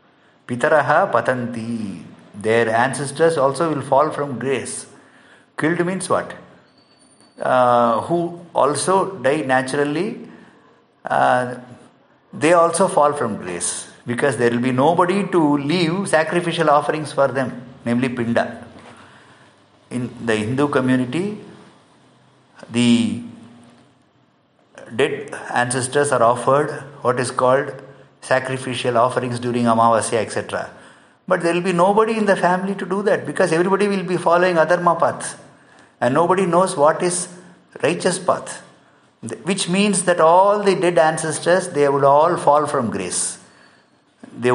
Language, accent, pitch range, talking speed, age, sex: English, Indian, 125-170 Hz, 125 wpm, 50-69, male